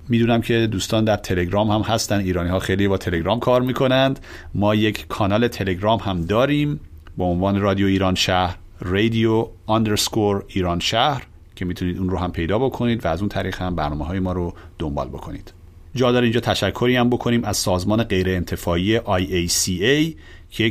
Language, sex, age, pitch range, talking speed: Persian, male, 40-59, 90-115 Hz, 170 wpm